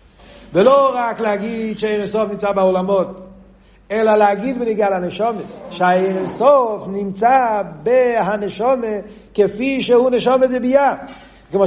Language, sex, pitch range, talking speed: Hebrew, male, 160-215 Hz, 105 wpm